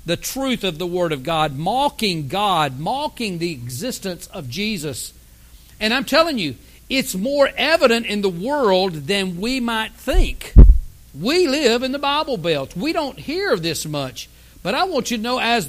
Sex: male